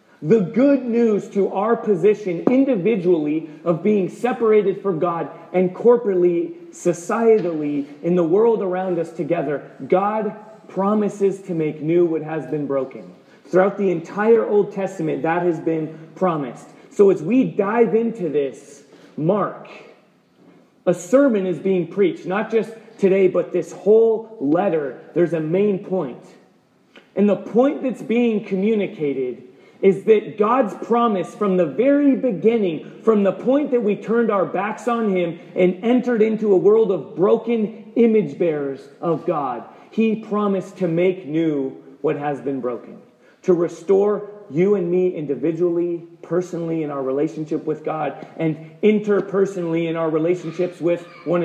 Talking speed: 145 wpm